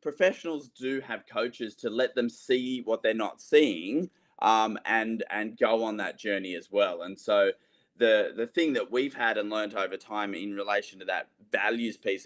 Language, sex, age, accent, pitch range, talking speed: English, male, 20-39, Australian, 105-155 Hz, 190 wpm